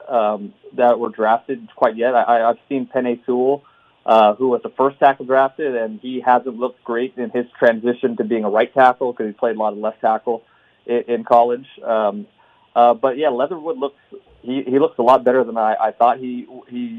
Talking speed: 210 wpm